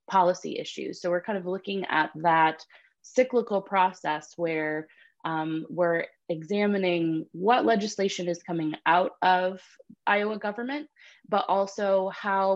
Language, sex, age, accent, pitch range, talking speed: English, female, 20-39, American, 170-210 Hz, 125 wpm